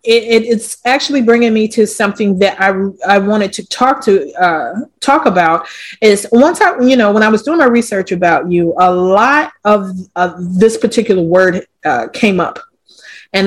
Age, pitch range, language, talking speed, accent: 30-49, 195-235 Hz, English, 185 wpm, American